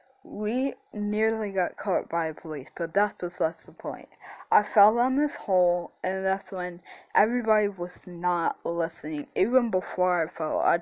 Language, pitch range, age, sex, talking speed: English, 160-205 Hz, 10-29, female, 155 wpm